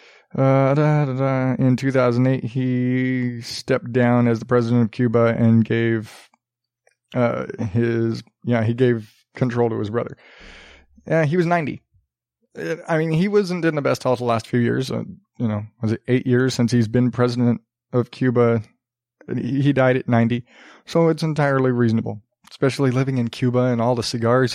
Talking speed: 185 wpm